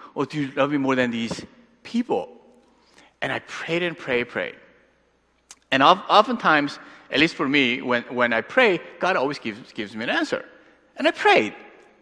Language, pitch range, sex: Korean, 195-290 Hz, male